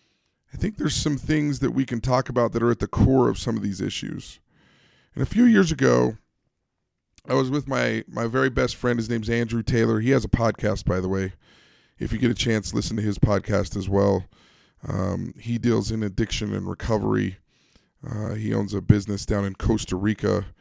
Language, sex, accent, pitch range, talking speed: English, male, American, 105-130 Hz, 205 wpm